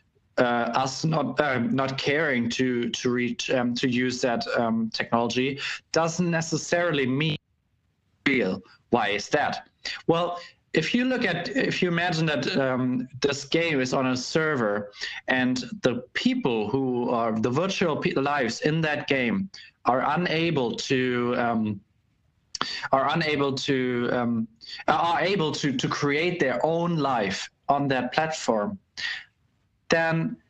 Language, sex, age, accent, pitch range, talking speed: English, male, 20-39, German, 125-160 Hz, 135 wpm